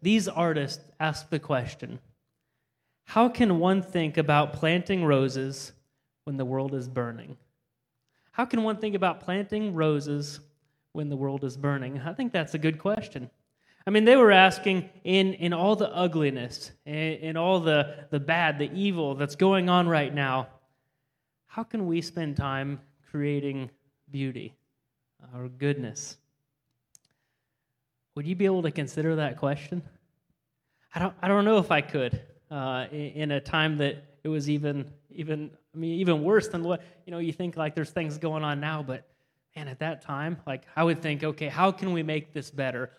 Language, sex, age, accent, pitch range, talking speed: English, male, 30-49, American, 140-175 Hz, 175 wpm